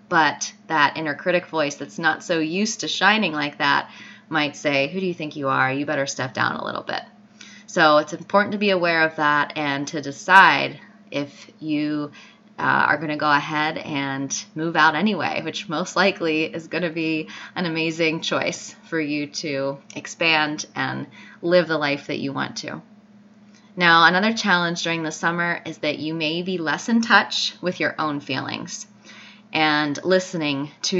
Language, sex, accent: English, female, American